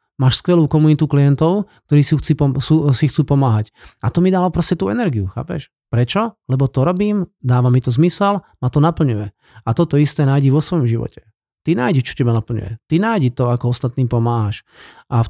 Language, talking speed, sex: Slovak, 185 wpm, male